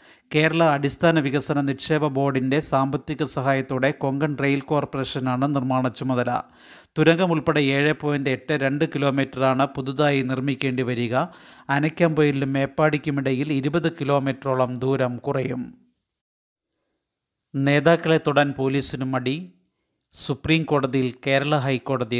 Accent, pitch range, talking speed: native, 130-145 Hz, 95 wpm